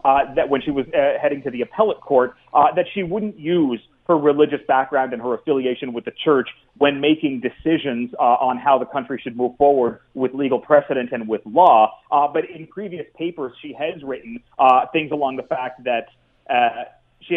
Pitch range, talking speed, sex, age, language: 140-175 Hz, 195 wpm, male, 30-49, English